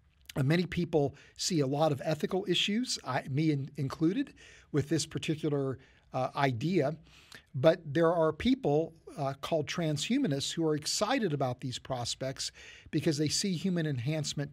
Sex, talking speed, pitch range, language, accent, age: male, 140 wpm, 135-160 Hz, English, American, 50-69